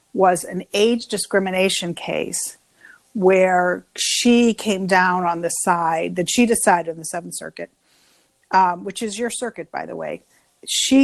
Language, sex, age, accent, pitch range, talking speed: English, female, 50-69, American, 175-215 Hz, 150 wpm